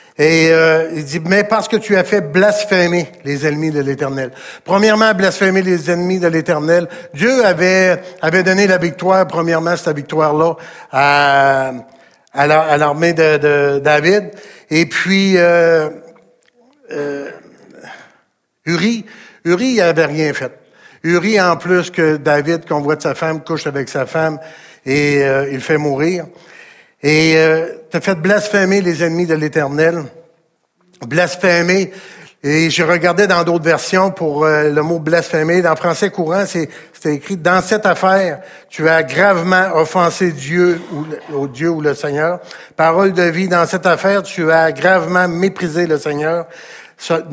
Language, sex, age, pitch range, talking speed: French, male, 60-79, 155-180 Hz, 160 wpm